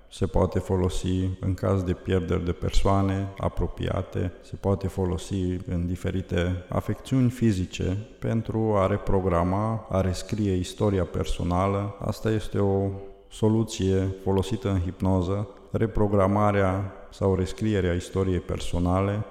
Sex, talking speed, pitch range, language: male, 110 wpm, 95-105 Hz, Romanian